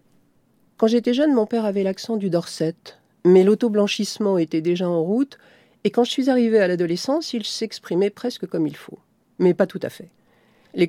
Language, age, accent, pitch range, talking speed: French, 50-69, French, 165-220 Hz, 185 wpm